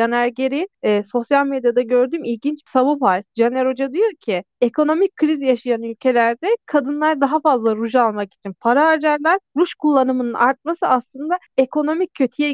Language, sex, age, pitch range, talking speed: Turkish, female, 30-49, 245-310 Hz, 150 wpm